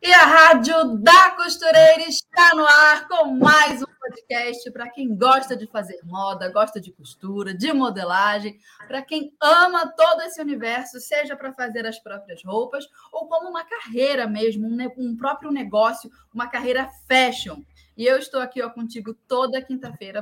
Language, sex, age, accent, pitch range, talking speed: Portuguese, female, 20-39, Brazilian, 215-280 Hz, 165 wpm